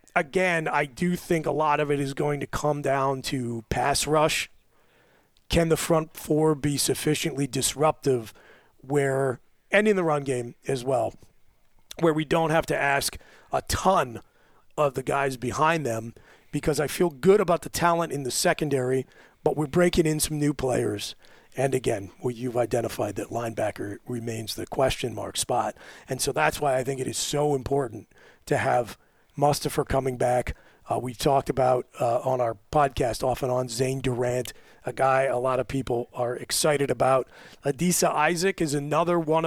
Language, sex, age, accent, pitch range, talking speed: English, male, 40-59, American, 130-155 Hz, 175 wpm